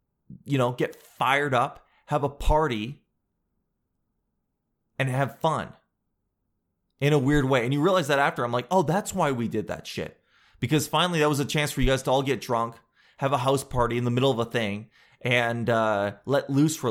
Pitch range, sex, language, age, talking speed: 110-150 Hz, male, English, 20-39, 200 wpm